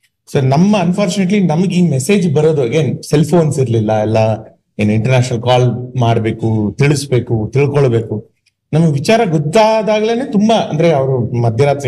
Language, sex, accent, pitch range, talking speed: Kannada, male, native, 125-180 Hz, 120 wpm